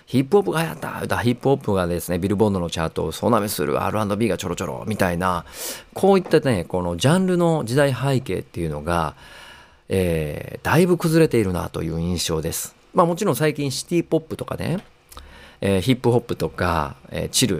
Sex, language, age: male, Japanese, 40-59